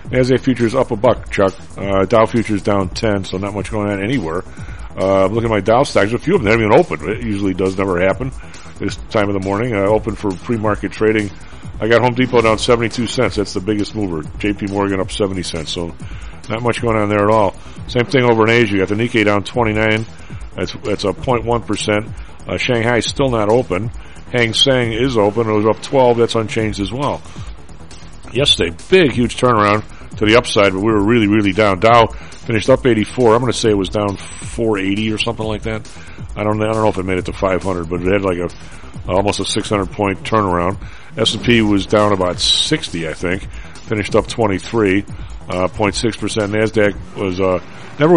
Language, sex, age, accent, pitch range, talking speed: English, male, 40-59, American, 95-110 Hz, 215 wpm